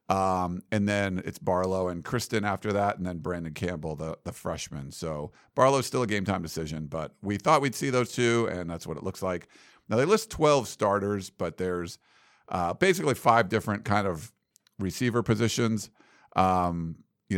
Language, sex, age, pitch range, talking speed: English, male, 50-69, 90-115 Hz, 185 wpm